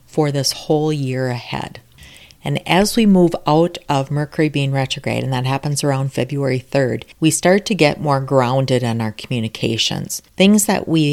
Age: 40-59